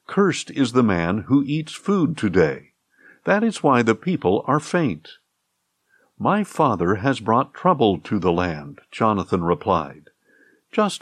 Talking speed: 140 wpm